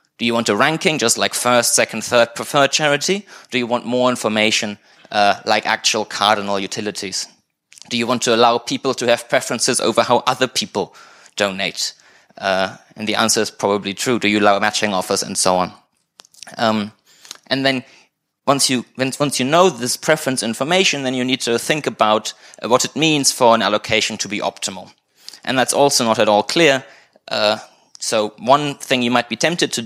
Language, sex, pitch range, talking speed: English, male, 105-125 Hz, 185 wpm